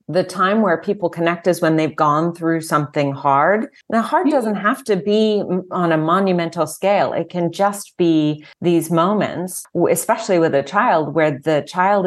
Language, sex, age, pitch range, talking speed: English, female, 30-49, 145-180 Hz, 175 wpm